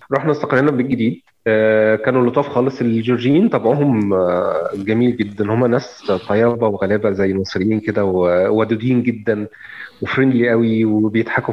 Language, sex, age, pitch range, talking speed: Arabic, male, 30-49, 110-130 Hz, 115 wpm